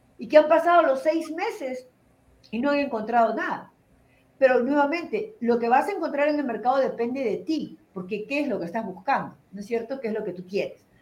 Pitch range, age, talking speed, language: 235-320 Hz, 40-59, 225 wpm, Spanish